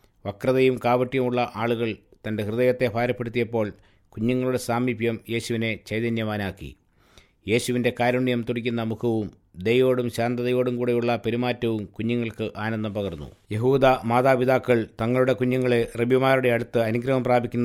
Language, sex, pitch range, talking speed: English, male, 110-125 Hz, 75 wpm